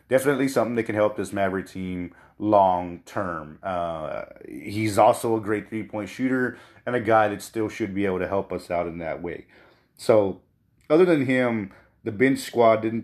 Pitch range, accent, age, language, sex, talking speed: 100-115 Hz, American, 30-49, English, male, 175 wpm